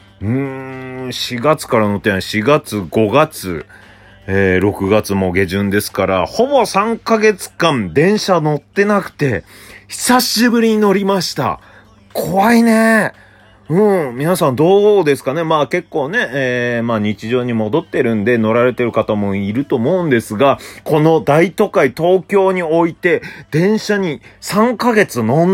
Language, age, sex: Japanese, 30-49, male